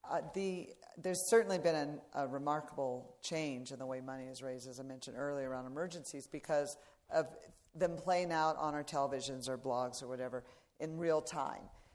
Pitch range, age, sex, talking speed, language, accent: 145-170 Hz, 50-69, female, 180 wpm, English, American